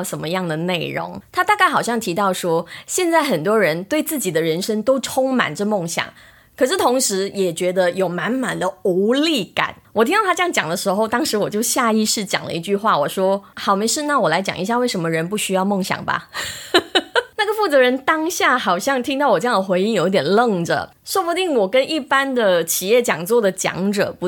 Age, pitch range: 20-39, 185-255 Hz